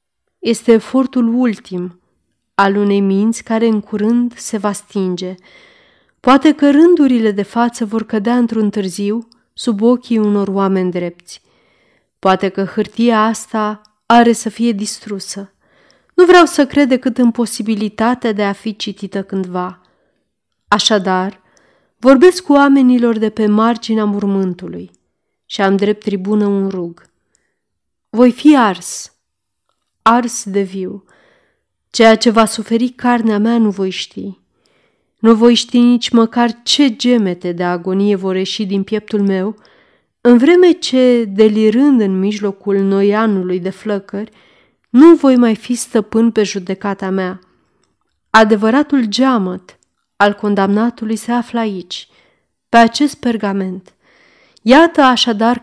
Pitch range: 195-240 Hz